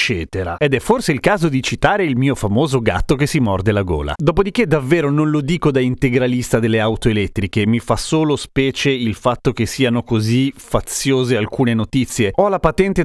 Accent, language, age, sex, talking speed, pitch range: native, Italian, 40-59, male, 190 wpm, 125-165 Hz